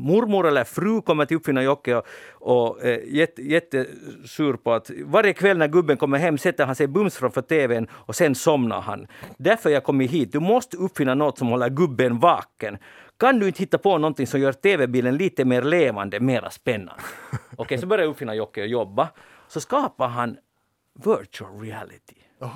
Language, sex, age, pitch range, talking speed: Swedish, male, 50-69, 125-170 Hz, 185 wpm